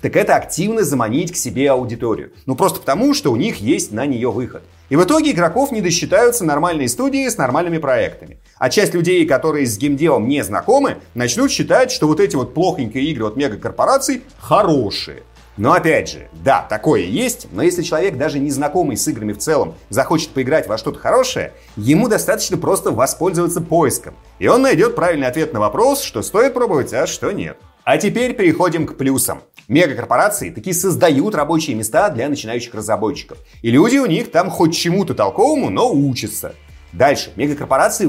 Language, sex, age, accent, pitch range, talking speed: Russian, male, 30-49, native, 130-225 Hz, 175 wpm